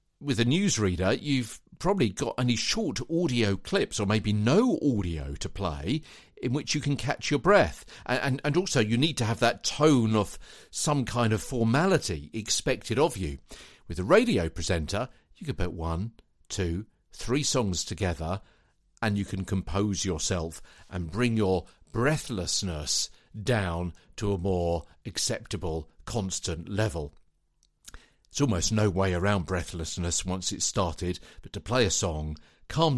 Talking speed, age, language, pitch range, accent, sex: 155 wpm, 50-69, English, 90-125 Hz, British, male